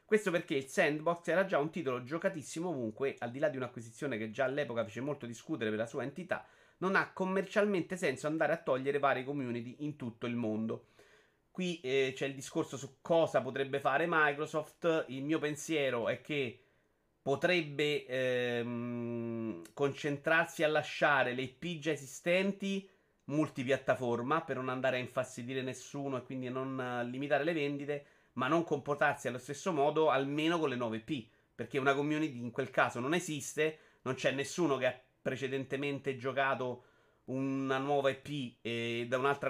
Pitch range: 130-160 Hz